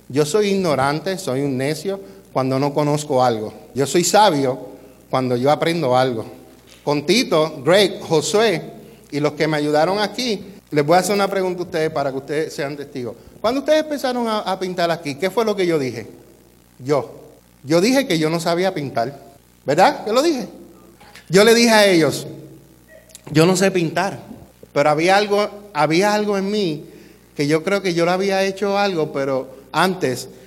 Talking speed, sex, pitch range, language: 180 wpm, male, 135-195 Hz, Spanish